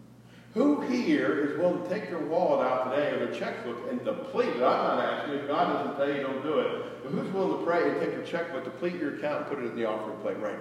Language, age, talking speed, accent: English, 50-69, 265 wpm, American